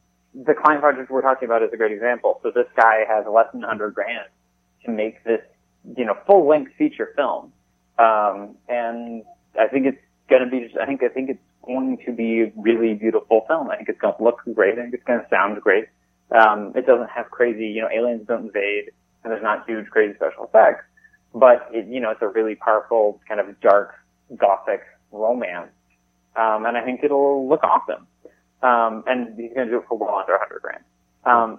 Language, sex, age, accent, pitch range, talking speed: English, male, 30-49, American, 110-140 Hz, 215 wpm